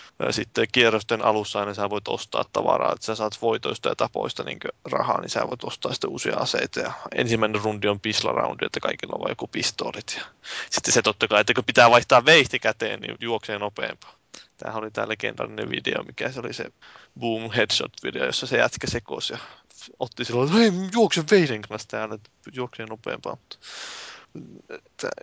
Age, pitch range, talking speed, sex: 20-39, 110-125 Hz, 175 wpm, male